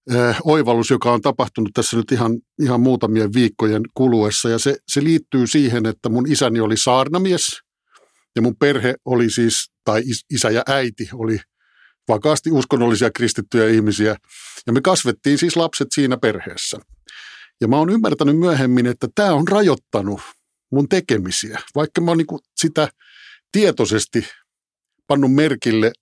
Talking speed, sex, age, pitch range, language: 140 wpm, male, 50-69, 115-155 Hz, Finnish